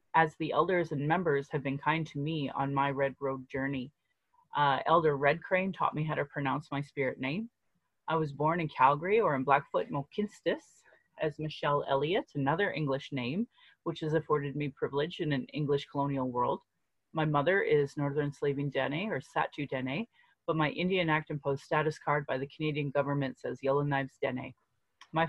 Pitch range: 140-165 Hz